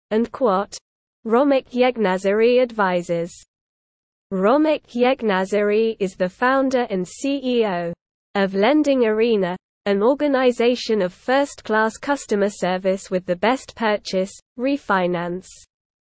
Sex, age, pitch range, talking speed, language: female, 20-39, 195-250 Hz, 100 wpm, English